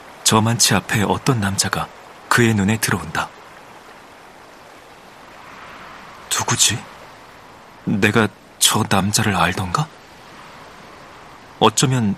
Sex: male